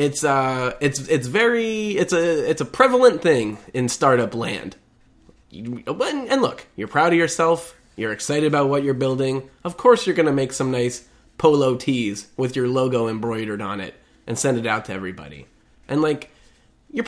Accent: American